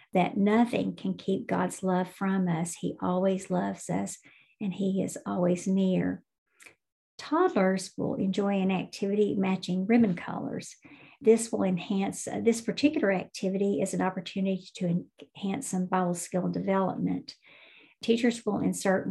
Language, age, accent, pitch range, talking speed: English, 50-69, American, 180-205 Hz, 140 wpm